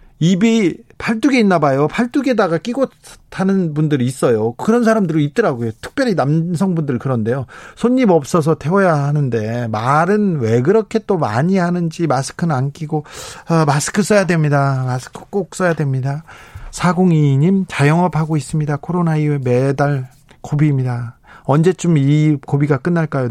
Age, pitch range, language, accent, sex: 40-59, 130-175 Hz, Korean, native, male